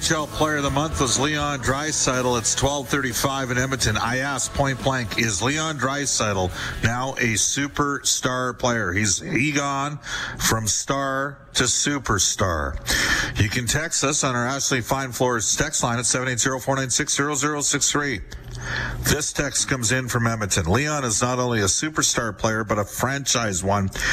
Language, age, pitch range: English, 50-69, 110-140 Hz